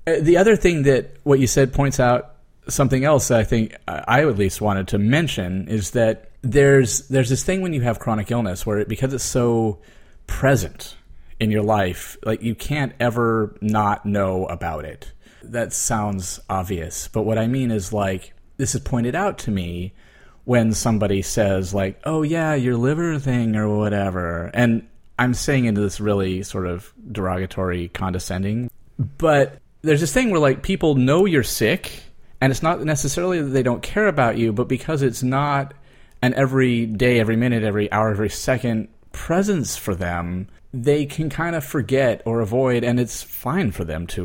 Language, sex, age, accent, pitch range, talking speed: English, male, 30-49, American, 100-135 Hz, 180 wpm